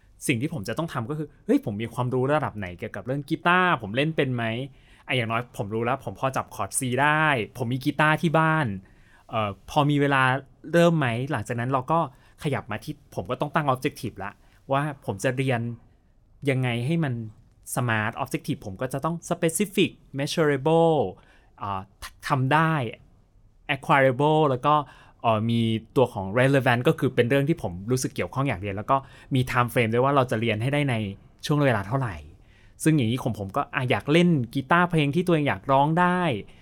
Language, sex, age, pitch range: Thai, male, 20-39, 110-145 Hz